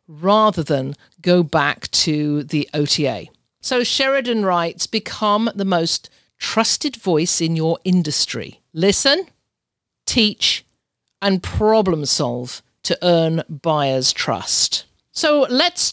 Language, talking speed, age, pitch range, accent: English, 110 wpm, 50-69, 170-225 Hz, British